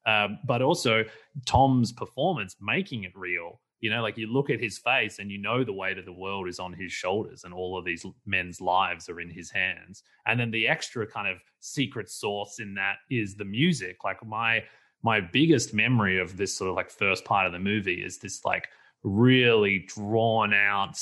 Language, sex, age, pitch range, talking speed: English, male, 30-49, 95-120 Hz, 205 wpm